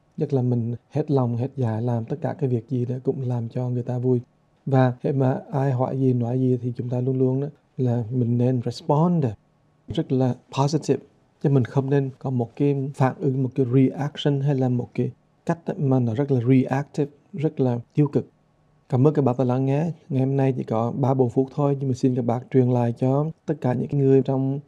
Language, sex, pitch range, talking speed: English, male, 125-140 Hz, 230 wpm